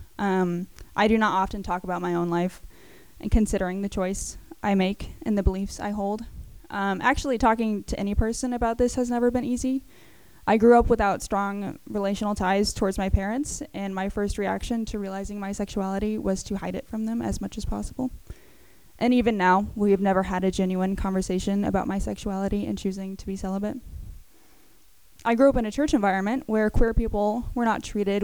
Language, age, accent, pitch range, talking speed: English, 10-29, American, 190-225 Hz, 195 wpm